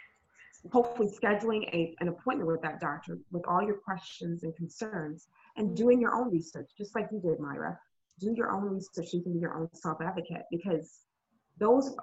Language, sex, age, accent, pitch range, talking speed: English, female, 30-49, American, 165-200 Hz, 175 wpm